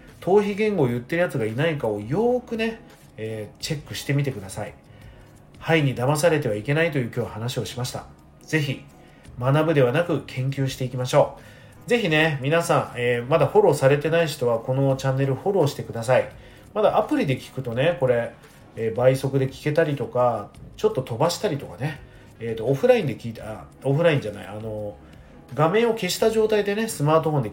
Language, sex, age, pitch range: Japanese, male, 40-59, 125-170 Hz